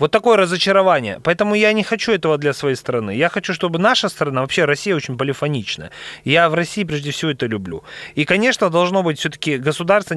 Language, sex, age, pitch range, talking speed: Russian, male, 30-49, 145-195 Hz, 195 wpm